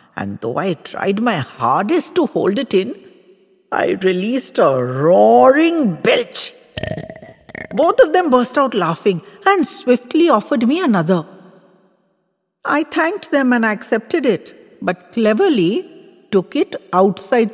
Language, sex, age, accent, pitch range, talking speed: English, female, 60-79, Indian, 160-250 Hz, 125 wpm